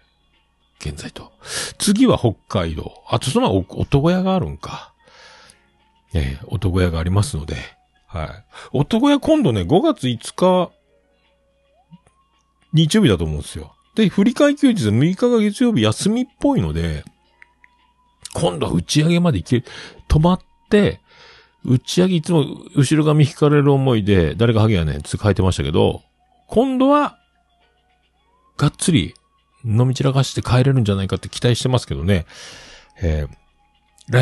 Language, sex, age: Japanese, male, 50-69